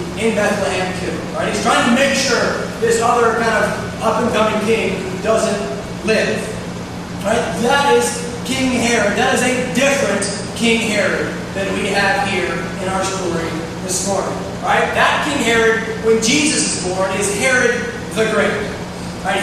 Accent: American